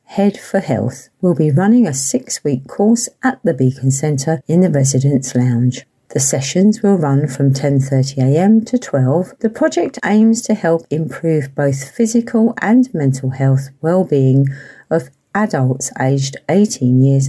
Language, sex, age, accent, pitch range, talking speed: English, female, 50-69, British, 135-205 Hz, 145 wpm